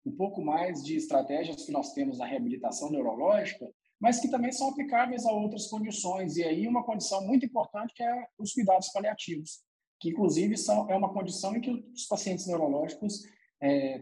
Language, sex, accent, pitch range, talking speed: Portuguese, male, Brazilian, 160-265 Hz, 180 wpm